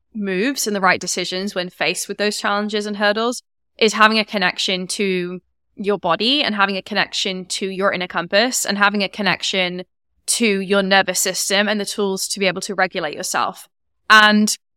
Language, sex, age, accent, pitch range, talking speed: English, female, 20-39, British, 185-220 Hz, 185 wpm